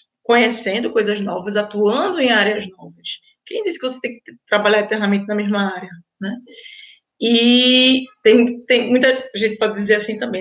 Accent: Brazilian